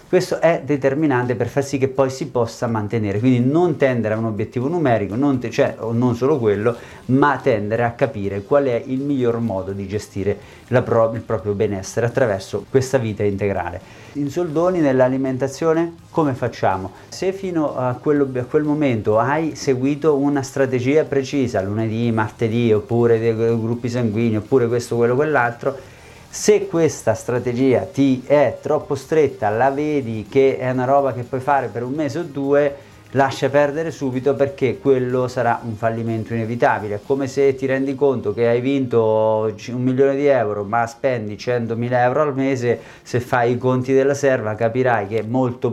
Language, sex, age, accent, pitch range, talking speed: Italian, male, 30-49, native, 115-140 Hz, 170 wpm